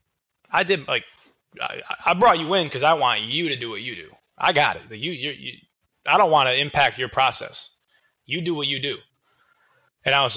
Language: English